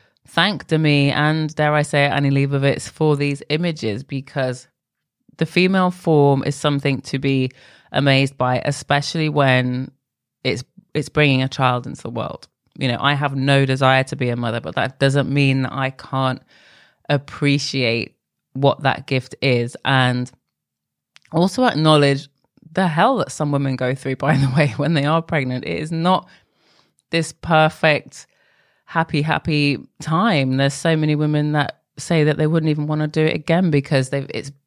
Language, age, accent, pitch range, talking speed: English, 20-39, British, 135-160 Hz, 165 wpm